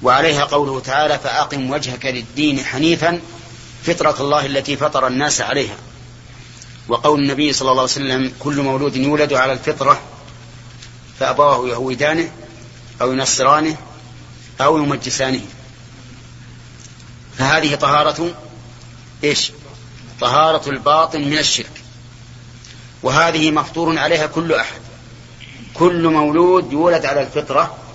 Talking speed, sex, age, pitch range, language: 100 wpm, male, 30-49, 120-145 Hz, Arabic